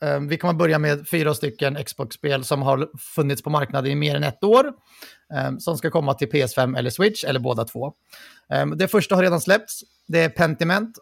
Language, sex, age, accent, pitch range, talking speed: Swedish, male, 30-49, native, 135-170 Hz, 190 wpm